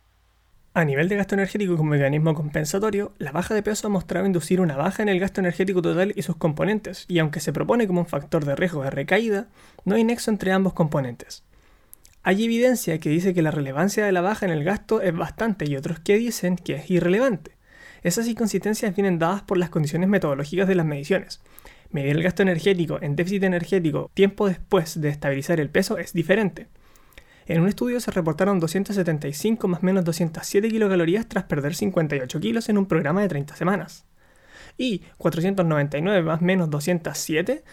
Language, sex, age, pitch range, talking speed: Spanish, male, 20-39, 160-200 Hz, 185 wpm